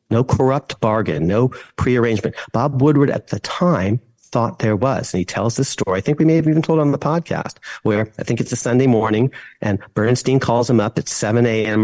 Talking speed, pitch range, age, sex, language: 225 wpm, 110-130 Hz, 50-69, male, English